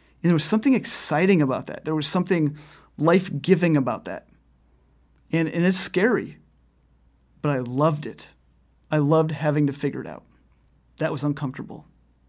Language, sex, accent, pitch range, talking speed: English, male, American, 135-185 Hz, 150 wpm